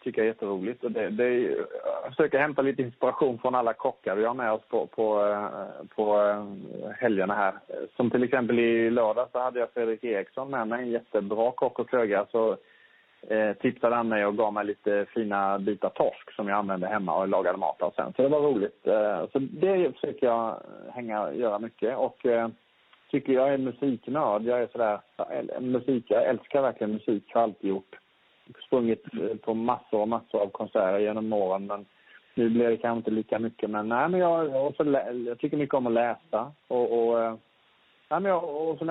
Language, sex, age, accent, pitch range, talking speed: Swedish, male, 30-49, Norwegian, 110-135 Hz, 195 wpm